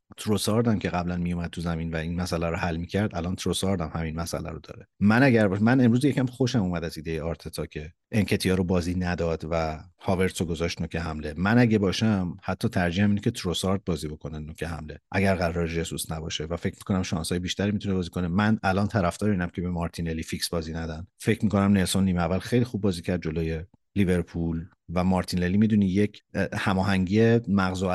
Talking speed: 210 wpm